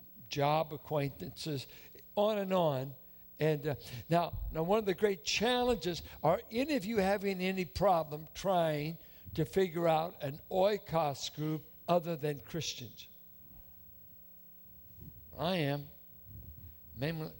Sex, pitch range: male, 125-170 Hz